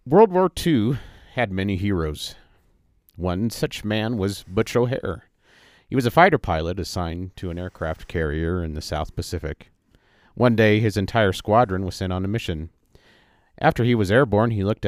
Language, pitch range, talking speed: English, 85-110 Hz, 170 wpm